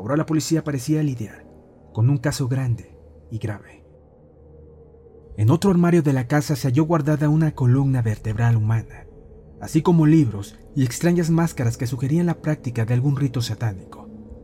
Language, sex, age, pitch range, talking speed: Spanish, male, 40-59, 110-150 Hz, 160 wpm